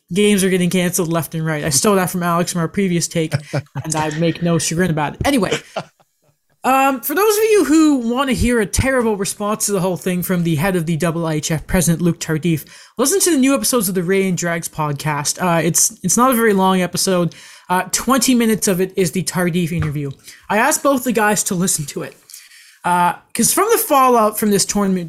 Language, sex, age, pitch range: English, male, 20-39, 170-225 Hz